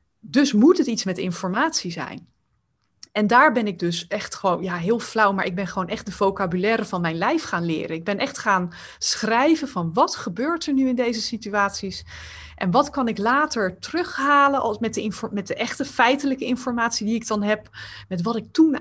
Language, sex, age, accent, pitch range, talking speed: Dutch, female, 20-39, Dutch, 185-250 Hz, 195 wpm